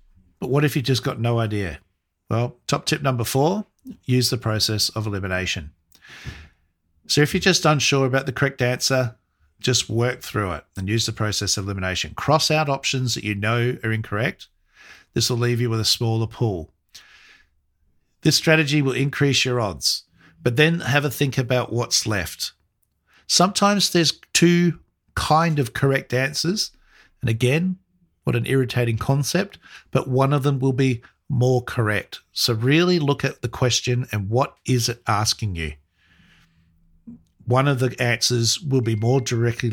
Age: 50-69